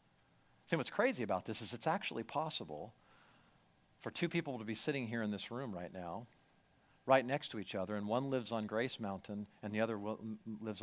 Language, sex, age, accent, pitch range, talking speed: English, male, 50-69, American, 125-170 Hz, 200 wpm